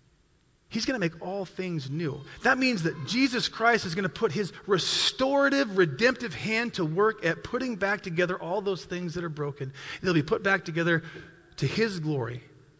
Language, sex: English, male